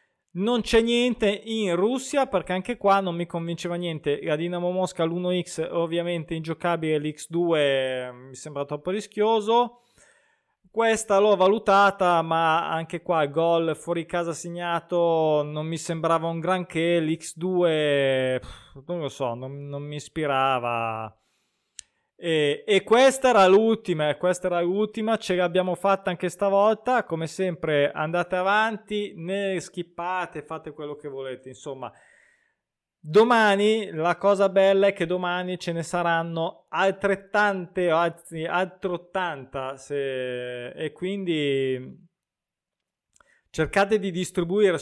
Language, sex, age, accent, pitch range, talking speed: Italian, male, 20-39, native, 155-190 Hz, 120 wpm